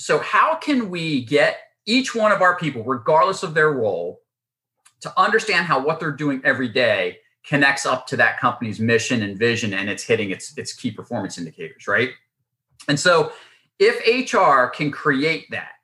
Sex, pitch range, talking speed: male, 125-185 Hz, 175 wpm